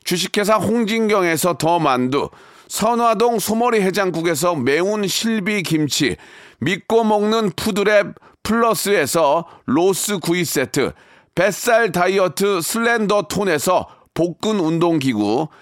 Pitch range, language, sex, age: 175-225 Hz, Korean, male, 40-59